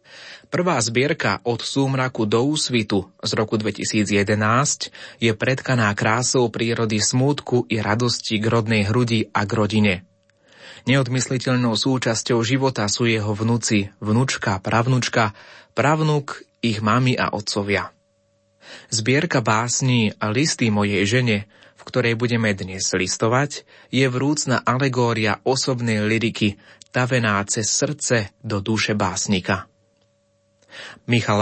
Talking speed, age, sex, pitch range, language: 110 wpm, 30-49, male, 110-130 Hz, Slovak